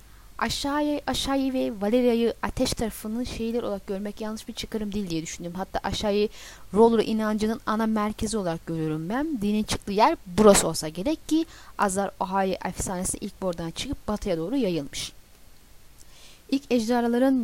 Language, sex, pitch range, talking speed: Turkish, female, 195-245 Hz, 140 wpm